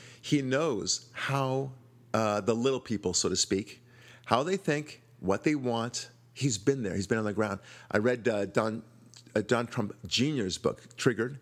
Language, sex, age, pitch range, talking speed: English, male, 50-69, 105-125 Hz, 180 wpm